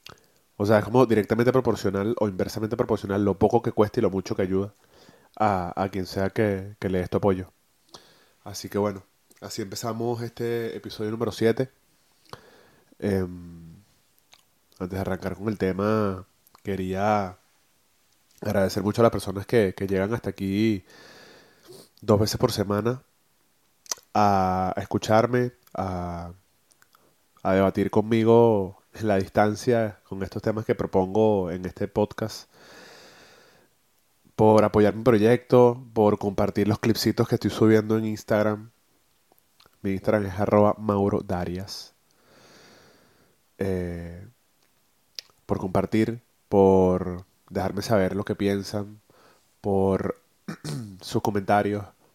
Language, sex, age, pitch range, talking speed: Spanish, male, 20-39, 95-110 Hz, 120 wpm